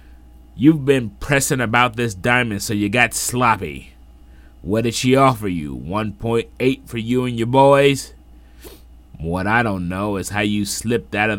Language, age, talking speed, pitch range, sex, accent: English, 30-49, 165 wpm, 90-120 Hz, male, American